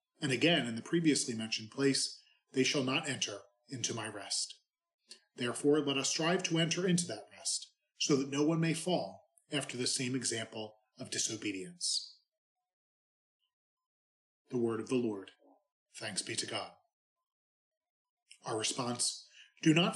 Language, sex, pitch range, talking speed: English, male, 120-165 Hz, 145 wpm